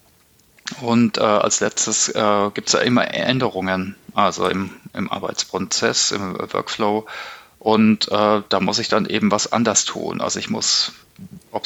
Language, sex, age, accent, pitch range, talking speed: English, male, 40-59, German, 105-120 Hz, 150 wpm